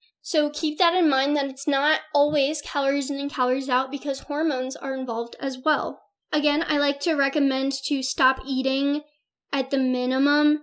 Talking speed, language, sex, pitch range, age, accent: 175 wpm, English, female, 260-295 Hz, 10-29, American